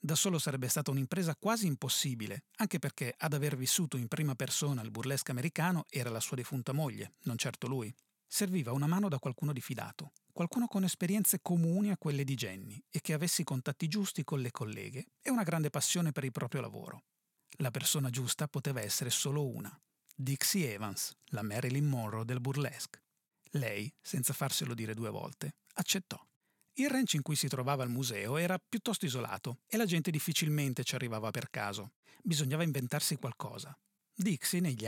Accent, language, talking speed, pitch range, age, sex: native, Italian, 175 wpm, 130-180 Hz, 40-59, male